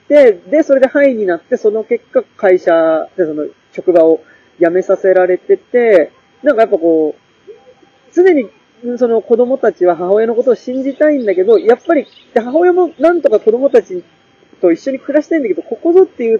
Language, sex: Japanese, male